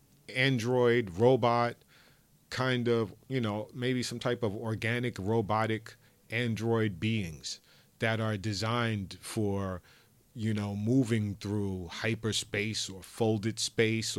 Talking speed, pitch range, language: 110 wpm, 100-120 Hz, English